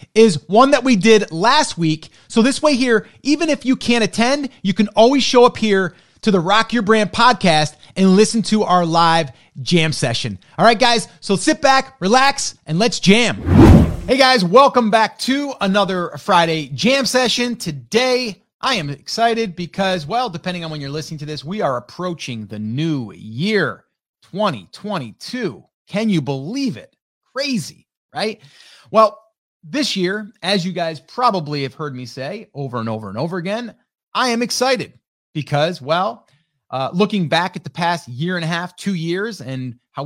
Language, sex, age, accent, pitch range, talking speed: English, male, 30-49, American, 145-220 Hz, 175 wpm